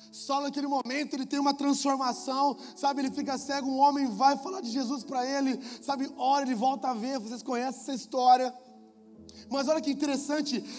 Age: 20-39